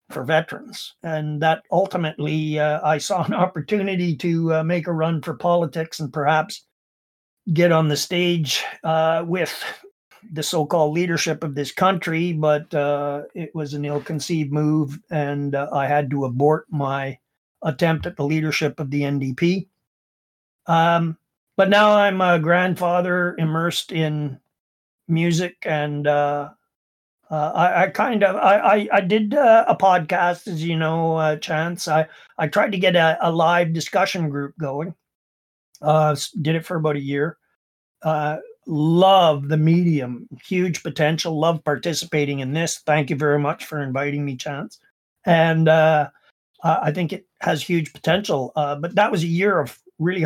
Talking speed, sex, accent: 160 wpm, male, American